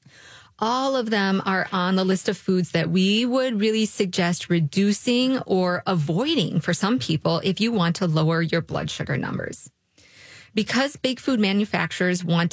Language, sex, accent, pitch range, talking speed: English, female, American, 175-215 Hz, 165 wpm